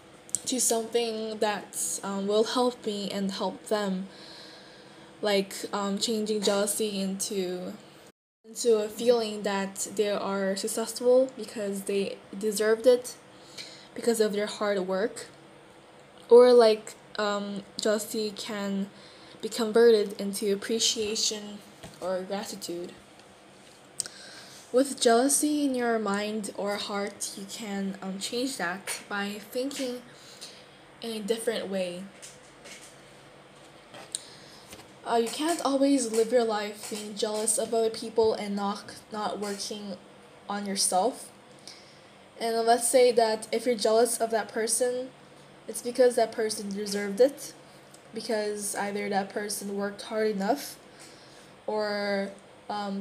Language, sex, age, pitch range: Korean, female, 10-29, 200-230 Hz